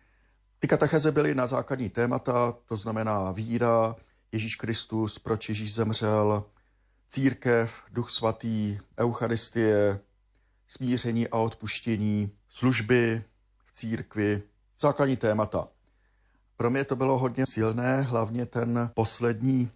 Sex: male